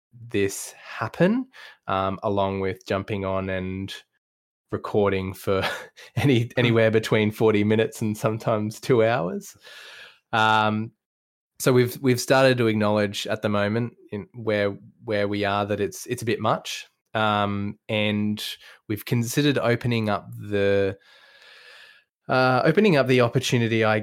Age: 20-39